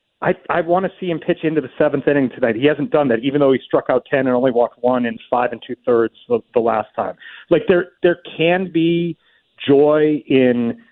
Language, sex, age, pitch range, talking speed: English, male, 40-59, 125-155 Hz, 225 wpm